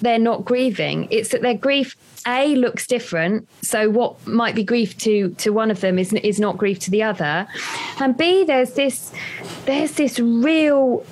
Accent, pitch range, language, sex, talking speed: British, 205-255 Hz, English, female, 185 wpm